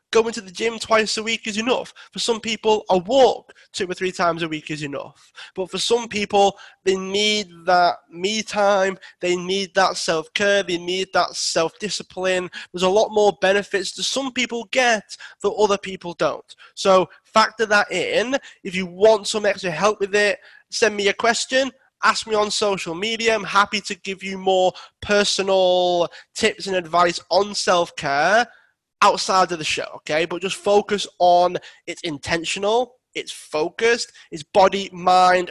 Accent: British